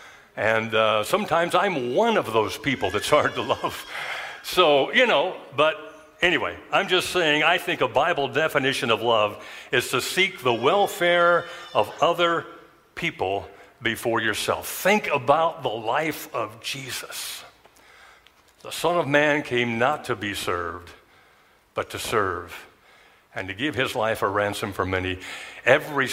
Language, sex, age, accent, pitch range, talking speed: English, male, 60-79, American, 115-175 Hz, 150 wpm